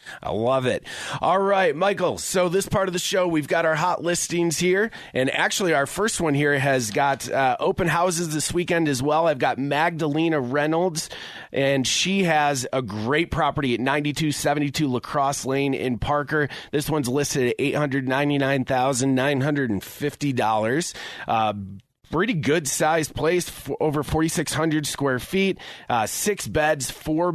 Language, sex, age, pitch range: English, male, 30-49, 135-155 Hz